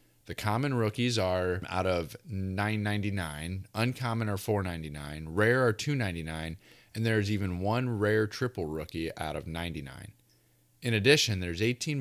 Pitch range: 90-120 Hz